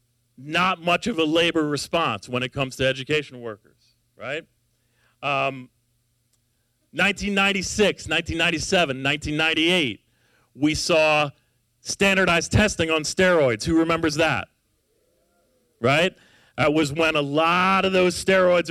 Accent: American